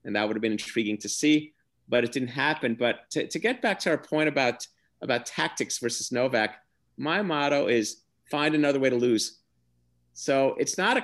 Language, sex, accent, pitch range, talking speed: English, male, American, 120-155 Hz, 200 wpm